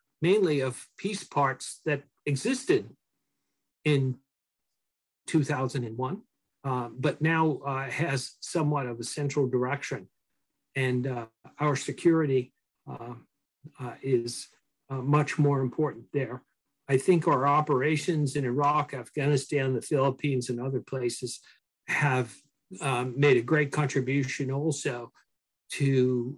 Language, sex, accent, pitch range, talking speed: English, male, American, 130-155 Hz, 115 wpm